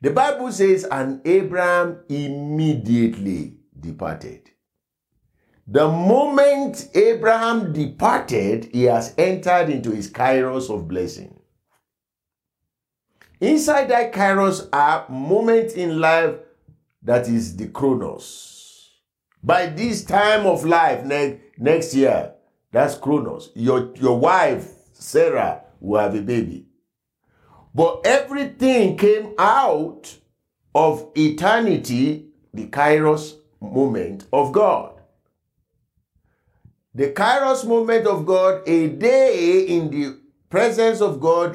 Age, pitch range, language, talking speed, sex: 50-69, 135-200 Hz, English, 100 wpm, male